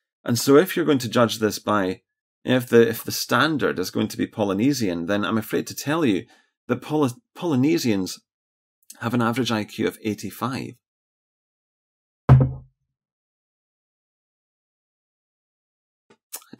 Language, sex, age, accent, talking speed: English, male, 30-49, British, 125 wpm